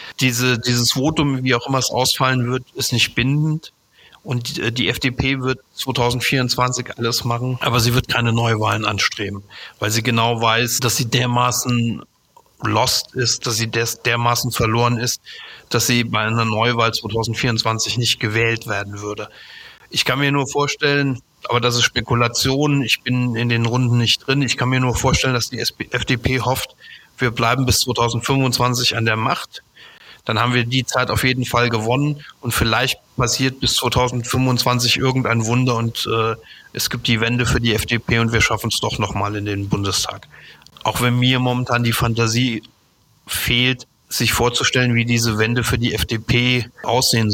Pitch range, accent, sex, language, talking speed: 115-130 Hz, German, male, German, 170 wpm